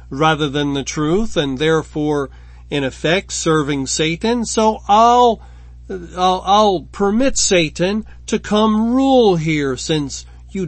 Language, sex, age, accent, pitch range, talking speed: English, male, 40-59, American, 140-175 Hz, 125 wpm